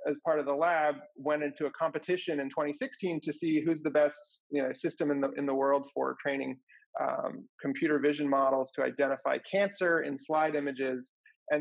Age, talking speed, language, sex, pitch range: 30-49, 190 wpm, English, male, 140-180 Hz